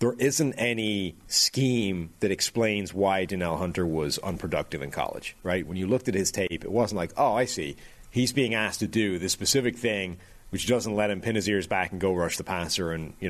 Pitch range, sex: 95-125 Hz, male